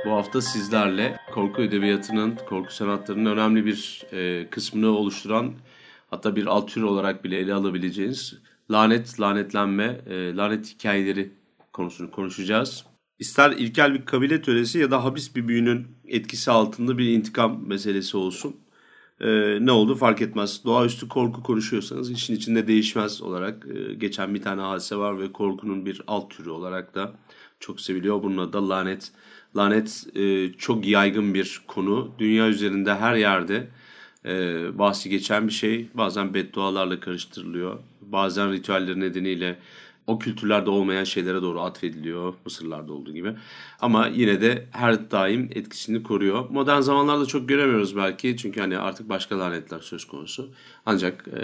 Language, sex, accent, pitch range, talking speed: Turkish, male, native, 95-115 Hz, 140 wpm